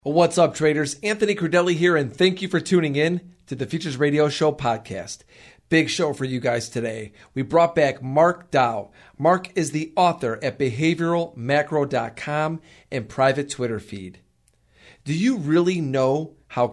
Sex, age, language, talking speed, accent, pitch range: male, 40-59, English, 160 wpm, American, 120-160 Hz